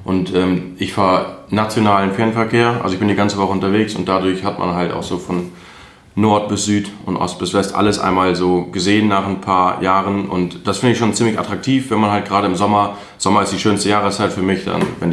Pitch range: 90-105 Hz